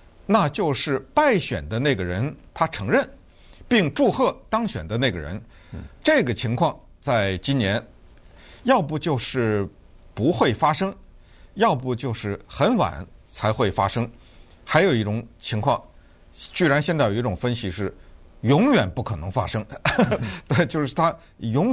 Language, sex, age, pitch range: Chinese, male, 50-69, 105-165 Hz